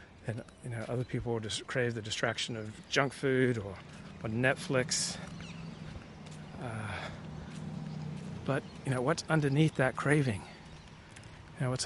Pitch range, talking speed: 120-145 Hz, 135 wpm